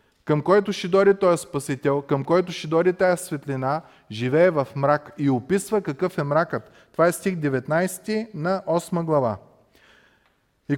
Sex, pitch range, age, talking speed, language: male, 130-180 Hz, 30-49, 160 wpm, Bulgarian